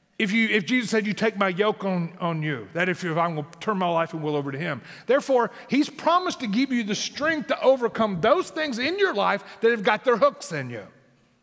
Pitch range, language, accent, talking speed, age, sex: 180-250 Hz, English, American, 250 wpm, 40-59, male